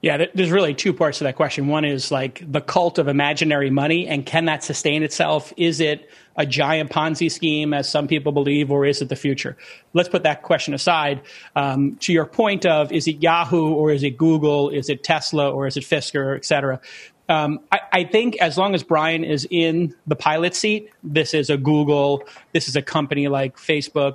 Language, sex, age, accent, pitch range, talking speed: English, male, 30-49, American, 145-170 Hz, 210 wpm